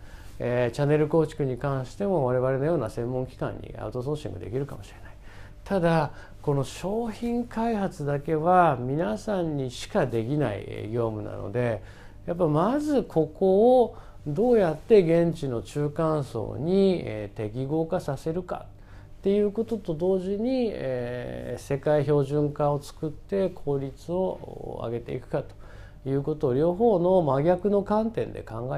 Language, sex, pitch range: Japanese, male, 110-170 Hz